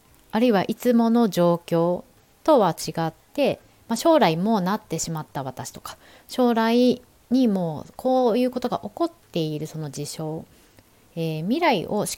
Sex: female